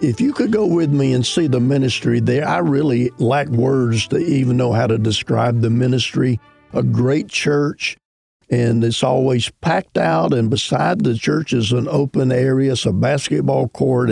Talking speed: 185 wpm